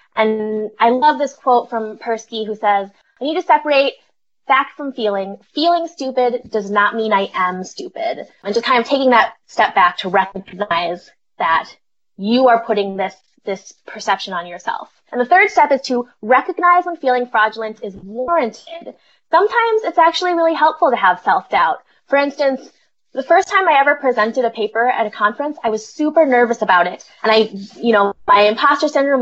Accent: American